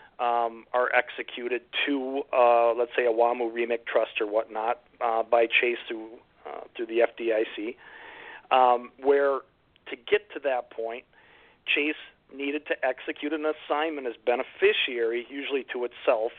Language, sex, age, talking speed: English, male, 40-59, 140 wpm